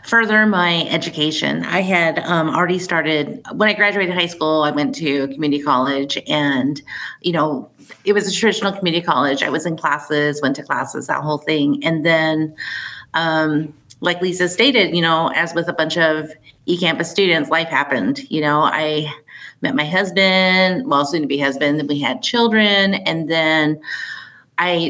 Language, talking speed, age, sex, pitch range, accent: English, 175 wpm, 30-49, female, 155-185 Hz, American